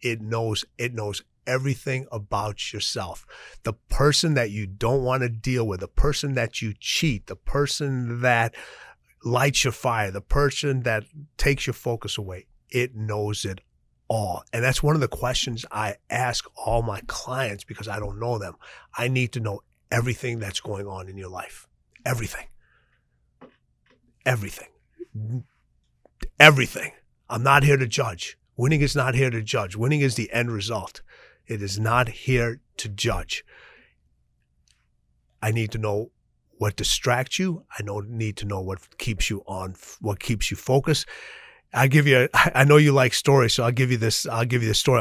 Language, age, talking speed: English, 30-49, 170 wpm